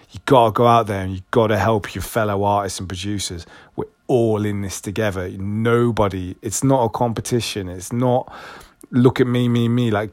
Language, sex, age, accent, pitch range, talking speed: English, male, 20-39, British, 105-140 Hz, 190 wpm